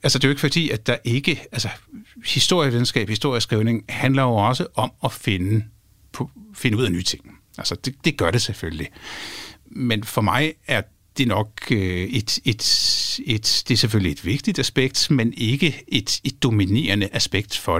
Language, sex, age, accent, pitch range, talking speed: Danish, male, 60-79, native, 105-135 Hz, 175 wpm